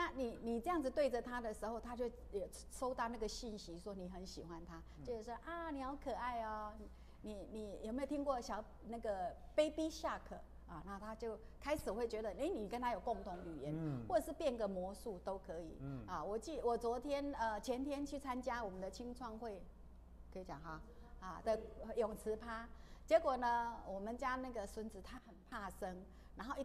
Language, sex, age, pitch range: Chinese, female, 50-69, 210-285 Hz